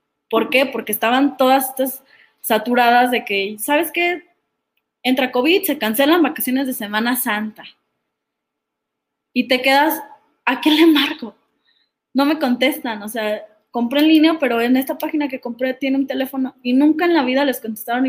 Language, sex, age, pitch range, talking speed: Spanish, female, 20-39, 220-285 Hz, 165 wpm